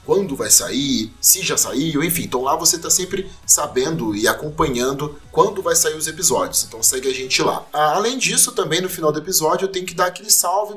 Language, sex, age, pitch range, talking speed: Portuguese, male, 30-49, 145-205 Hz, 210 wpm